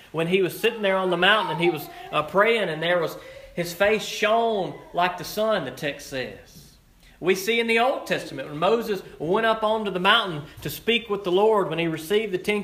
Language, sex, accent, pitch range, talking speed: English, male, American, 160-210 Hz, 230 wpm